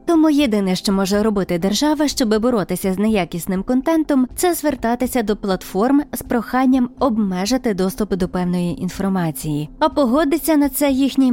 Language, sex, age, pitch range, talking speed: Ukrainian, female, 20-39, 190-275 Hz, 145 wpm